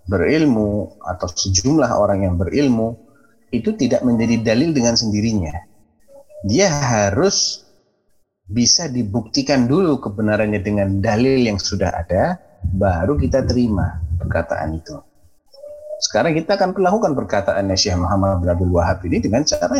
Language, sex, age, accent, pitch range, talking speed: Indonesian, male, 30-49, native, 95-125 Hz, 120 wpm